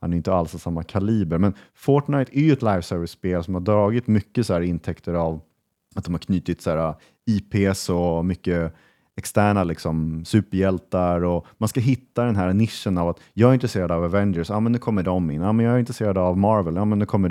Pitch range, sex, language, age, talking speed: 85-110 Hz, male, Swedish, 30-49, 220 wpm